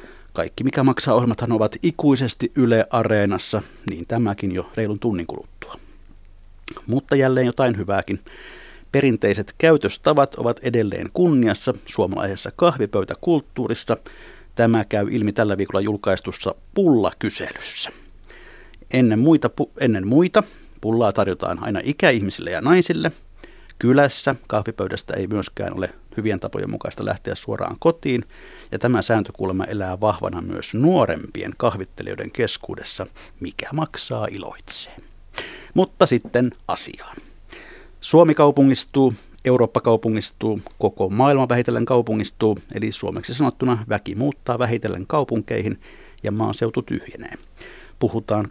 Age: 50-69